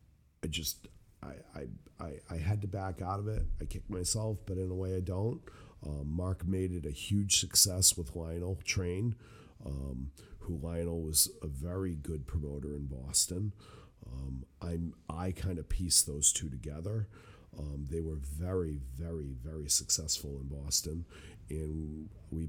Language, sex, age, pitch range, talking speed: English, male, 50-69, 75-95 Hz, 160 wpm